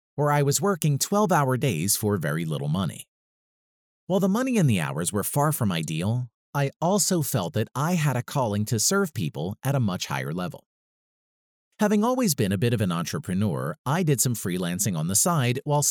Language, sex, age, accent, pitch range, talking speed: English, male, 40-59, American, 105-170 Hz, 195 wpm